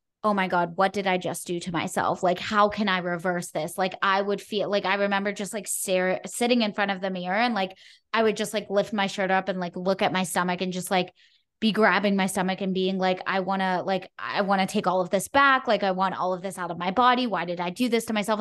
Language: English